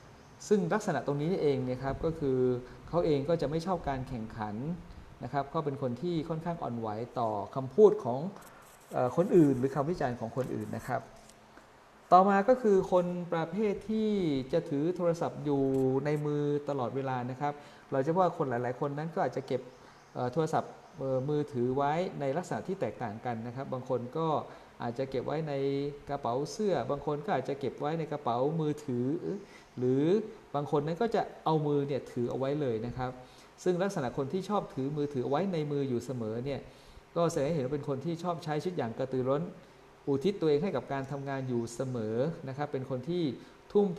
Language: Thai